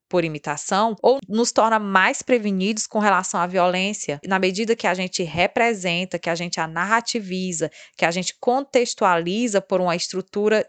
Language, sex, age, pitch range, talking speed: Portuguese, female, 20-39, 180-235 Hz, 165 wpm